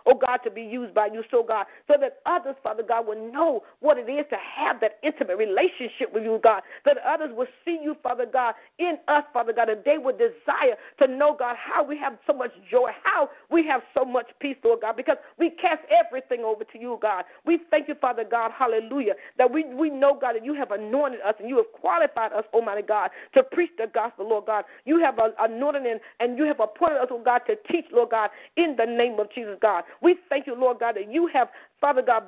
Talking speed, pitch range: 235 wpm, 225-295 Hz